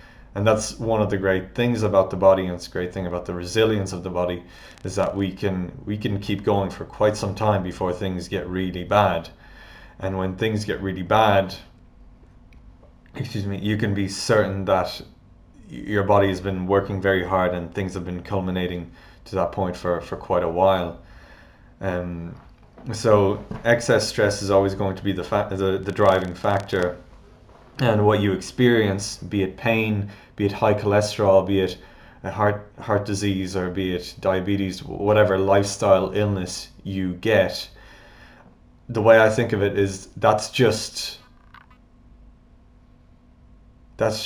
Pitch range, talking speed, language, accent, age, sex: 95-105 Hz, 165 wpm, English, Irish, 20-39, male